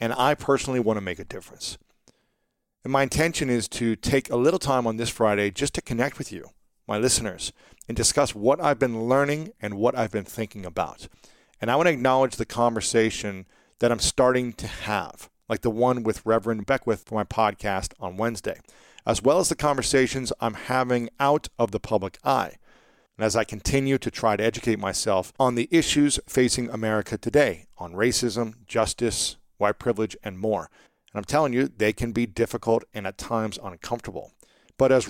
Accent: American